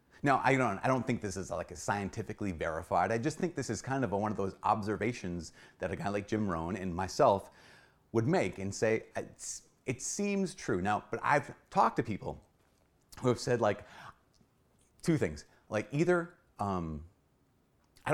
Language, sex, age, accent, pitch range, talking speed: English, male, 30-49, American, 95-125 Hz, 185 wpm